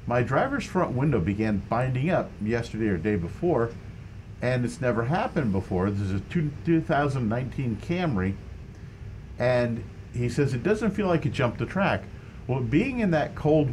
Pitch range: 100-145 Hz